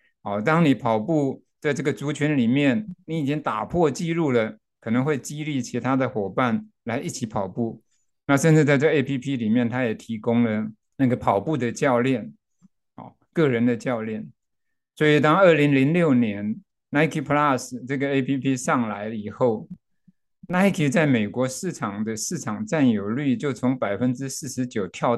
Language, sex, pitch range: Chinese, male, 120-155 Hz